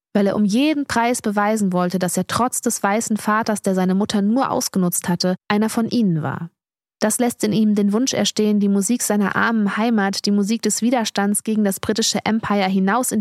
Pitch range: 195-225 Hz